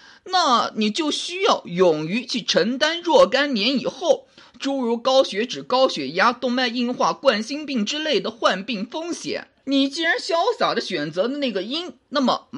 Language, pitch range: Chinese, 245-325 Hz